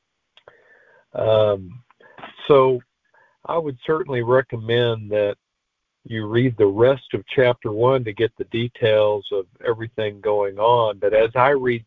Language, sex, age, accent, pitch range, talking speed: English, male, 50-69, American, 105-130 Hz, 130 wpm